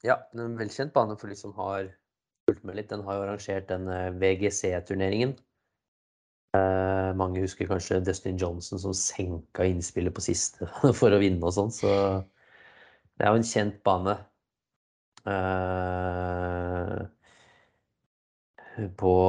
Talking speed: 130 wpm